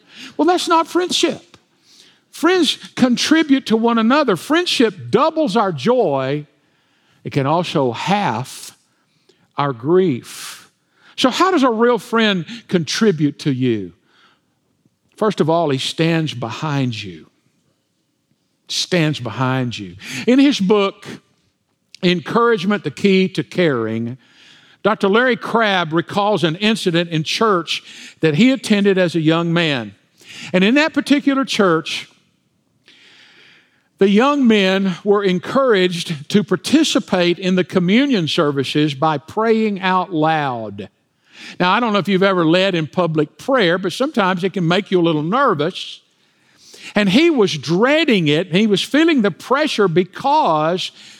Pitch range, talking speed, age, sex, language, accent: 160-230 Hz, 130 wpm, 50-69, male, English, American